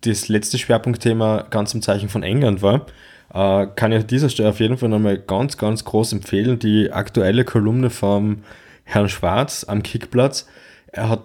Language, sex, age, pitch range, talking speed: German, male, 20-39, 105-120 Hz, 170 wpm